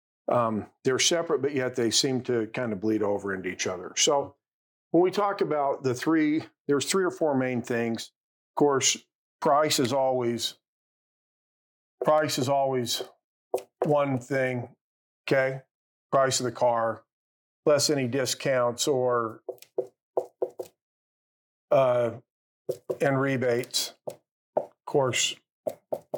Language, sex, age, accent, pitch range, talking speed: English, male, 50-69, American, 120-145 Hz, 120 wpm